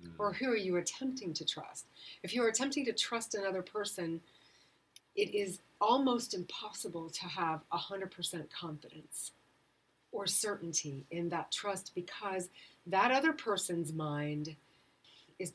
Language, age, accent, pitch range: English, 40-59, American, 160-215 Hz